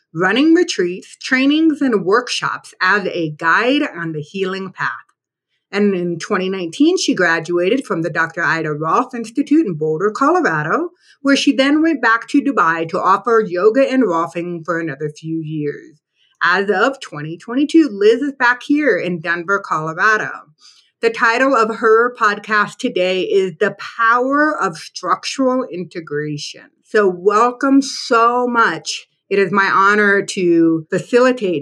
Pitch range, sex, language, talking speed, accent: 170-255 Hz, female, English, 140 wpm, American